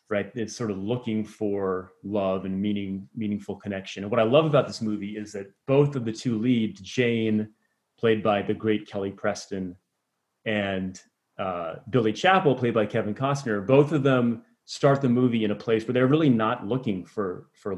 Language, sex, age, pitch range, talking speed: English, male, 30-49, 110-135 Hz, 190 wpm